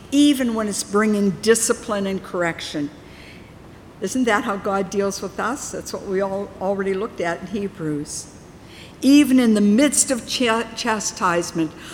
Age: 60-79